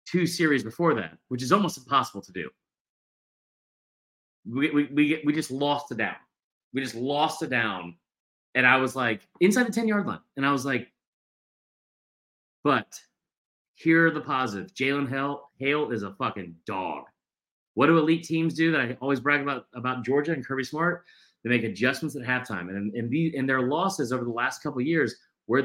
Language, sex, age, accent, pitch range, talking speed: English, male, 30-49, American, 120-160 Hz, 185 wpm